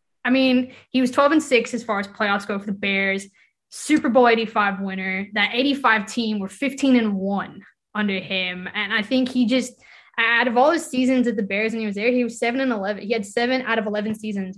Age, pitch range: 10-29, 200-245 Hz